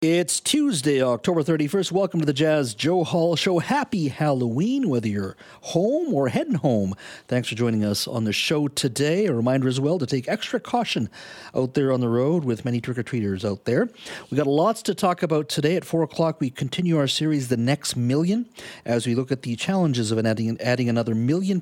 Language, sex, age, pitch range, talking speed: English, male, 40-59, 110-160 Hz, 205 wpm